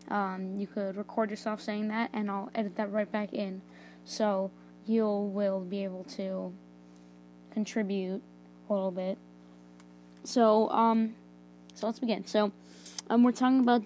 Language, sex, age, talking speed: English, female, 20-39, 145 wpm